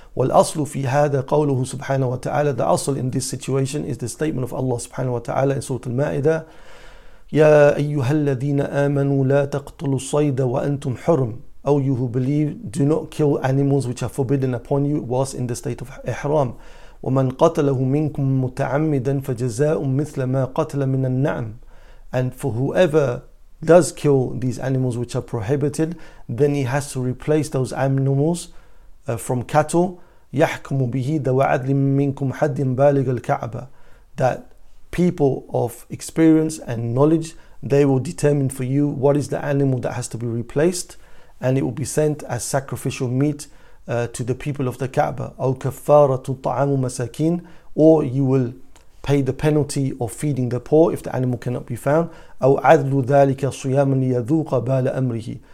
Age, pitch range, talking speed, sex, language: 50-69, 130-150 Hz, 145 wpm, male, English